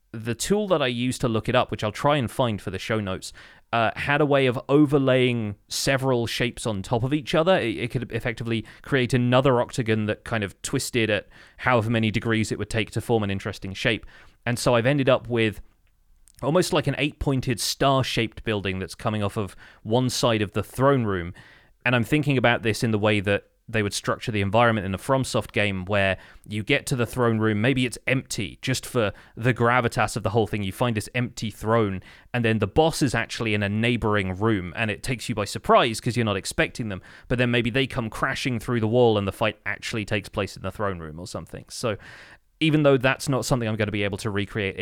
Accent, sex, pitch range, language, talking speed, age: British, male, 105-125 Hz, English, 230 wpm, 30-49